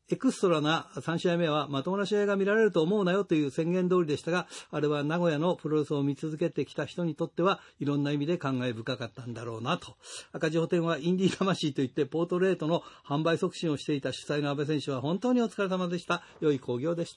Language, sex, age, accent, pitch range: Japanese, male, 50-69, native, 145-200 Hz